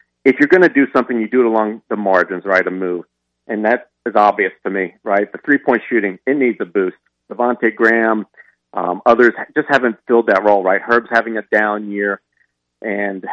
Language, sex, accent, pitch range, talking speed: English, male, American, 100-120 Hz, 205 wpm